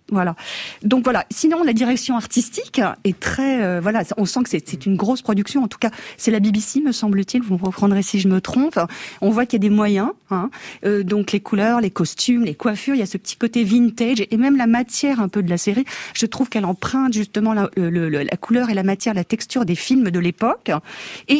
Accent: French